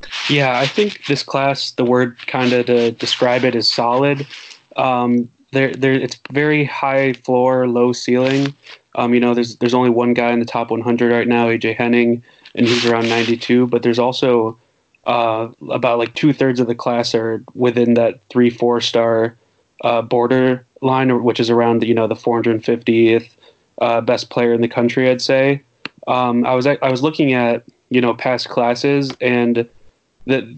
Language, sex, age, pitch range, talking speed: English, male, 20-39, 120-130 Hz, 175 wpm